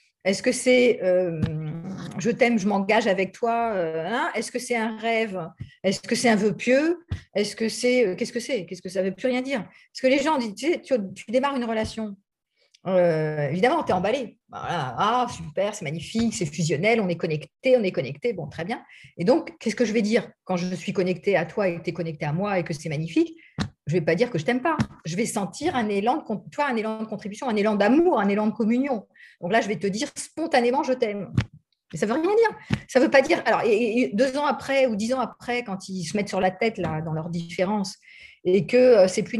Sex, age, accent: female, 40-59, French